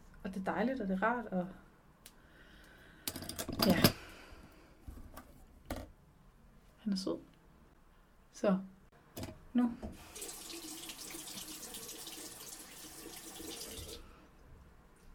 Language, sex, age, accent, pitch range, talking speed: Danish, female, 30-49, native, 170-215 Hz, 65 wpm